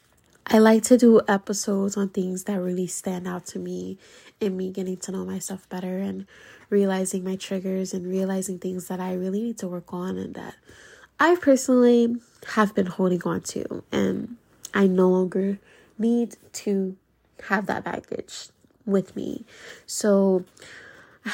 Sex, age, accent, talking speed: female, 20-39, American, 155 wpm